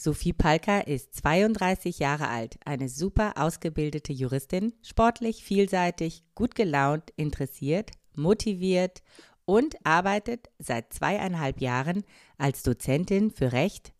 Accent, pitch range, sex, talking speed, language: German, 135-185 Hz, female, 105 wpm, German